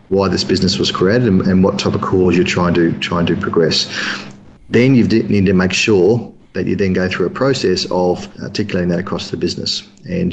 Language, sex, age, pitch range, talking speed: English, male, 40-59, 95-110 Hz, 220 wpm